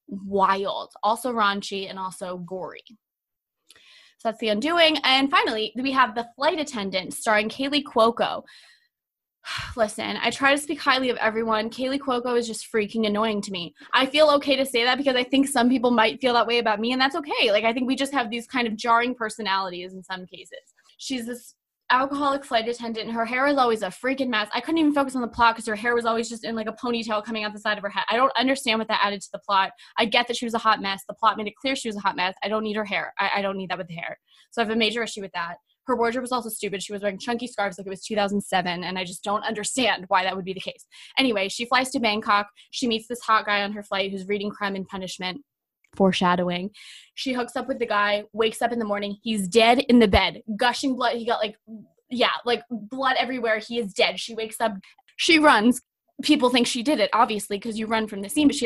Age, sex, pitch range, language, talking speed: 20-39, female, 205-255 Hz, English, 250 wpm